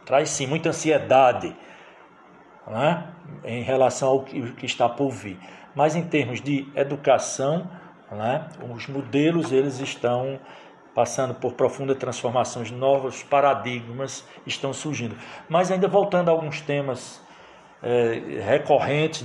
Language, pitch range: Portuguese, 130-155 Hz